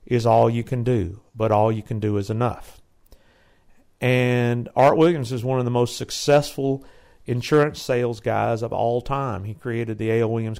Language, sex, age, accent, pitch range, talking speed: English, male, 50-69, American, 110-140 Hz, 180 wpm